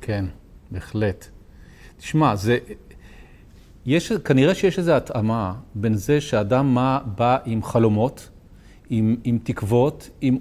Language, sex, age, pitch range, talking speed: Hebrew, male, 40-59, 110-140 Hz, 115 wpm